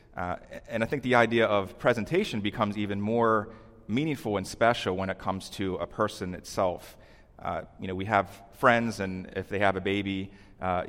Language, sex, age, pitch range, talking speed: English, male, 30-49, 95-105 Hz, 185 wpm